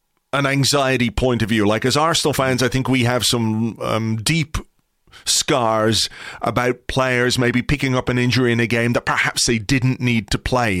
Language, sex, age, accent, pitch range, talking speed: English, male, 30-49, British, 115-145 Hz, 190 wpm